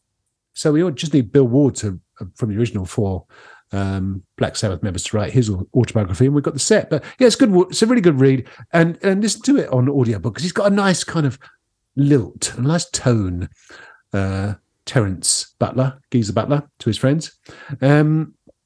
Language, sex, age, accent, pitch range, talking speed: English, male, 50-69, British, 95-140 Hz, 200 wpm